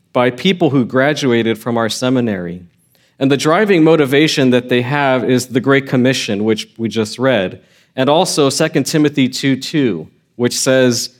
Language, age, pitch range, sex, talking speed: English, 40-59, 120-150 Hz, male, 155 wpm